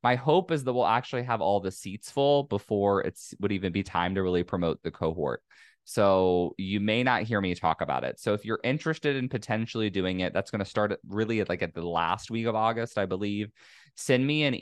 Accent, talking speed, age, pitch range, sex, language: American, 230 wpm, 20-39, 90-120 Hz, male, English